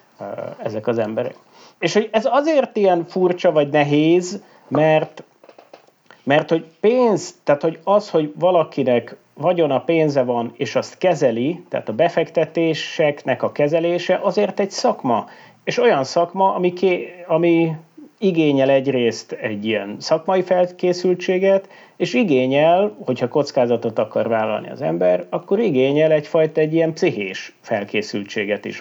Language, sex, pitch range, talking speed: Hungarian, male, 120-180 Hz, 130 wpm